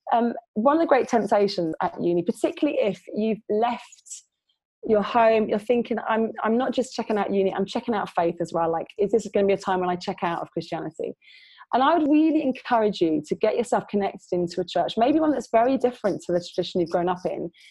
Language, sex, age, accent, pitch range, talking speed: English, female, 20-39, British, 185-245 Hz, 230 wpm